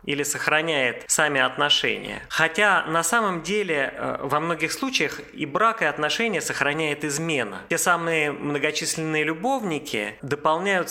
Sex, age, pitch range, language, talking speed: male, 20-39, 145-180 Hz, Russian, 125 wpm